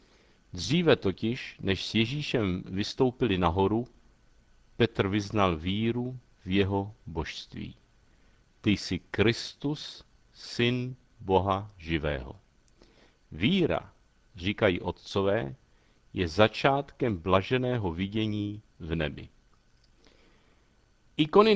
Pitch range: 100-140 Hz